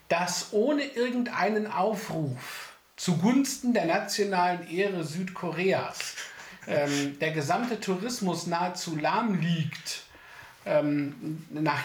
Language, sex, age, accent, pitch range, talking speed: English, male, 50-69, German, 145-200 Hz, 90 wpm